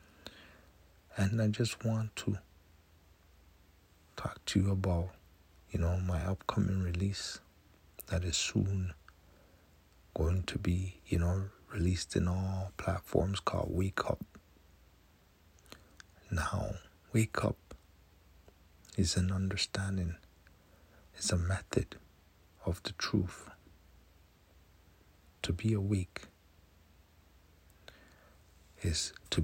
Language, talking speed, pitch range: English, 95 wpm, 80-95 Hz